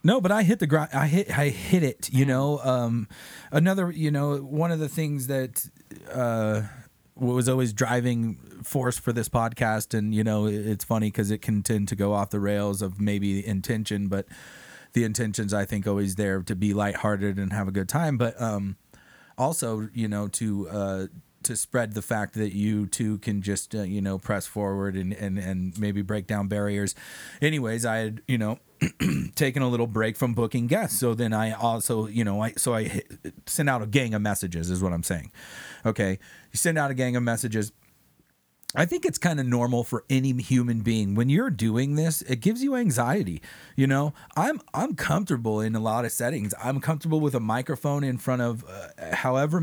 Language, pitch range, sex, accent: English, 105-135 Hz, male, American